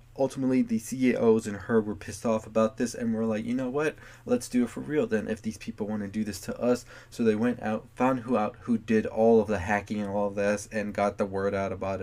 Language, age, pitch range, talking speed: English, 20-39, 105-120 Hz, 265 wpm